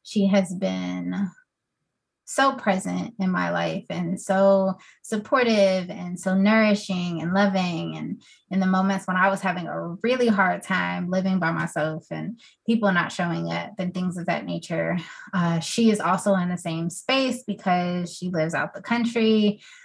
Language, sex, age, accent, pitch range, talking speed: English, female, 20-39, American, 175-210 Hz, 165 wpm